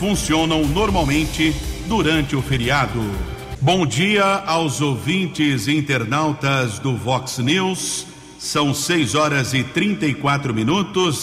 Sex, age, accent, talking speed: male, 60-79, Brazilian, 105 wpm